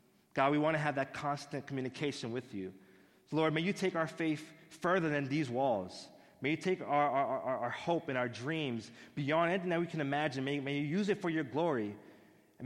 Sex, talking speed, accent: male, 225 wpm, American